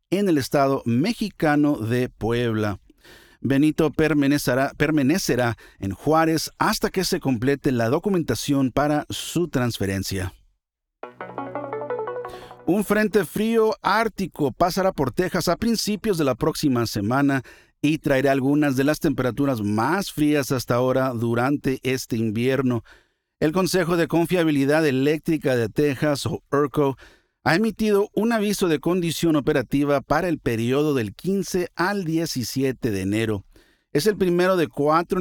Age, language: 50-69, Spanish